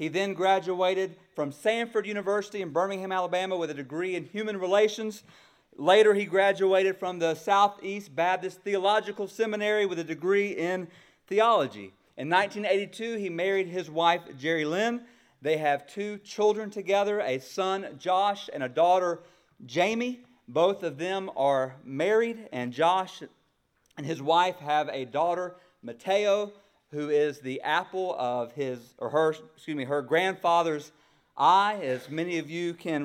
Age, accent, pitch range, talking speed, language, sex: 40-59, American, 160-205 Hz, 145 wpm, English, male